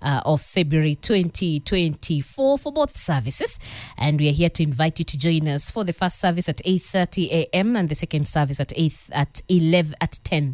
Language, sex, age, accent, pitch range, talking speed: English, female, 20-39, South African, 135-170 Hz, 210 wpm